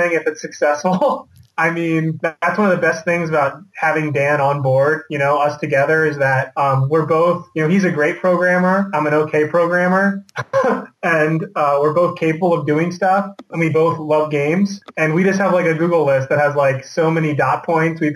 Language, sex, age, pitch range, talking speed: English, male, 20-39, 145-170 Hz, 210 wpm